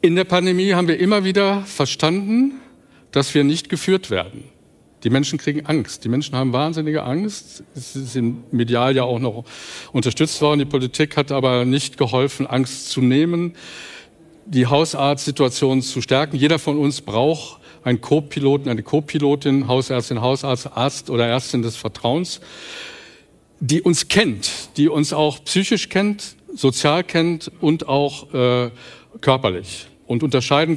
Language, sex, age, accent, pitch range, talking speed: German, male, 50-69, German, 130-160 Hz, 145 wpm